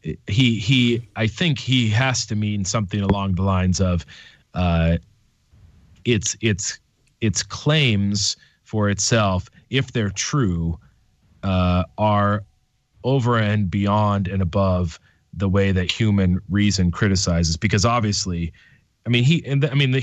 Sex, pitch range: male, 95-115 Hz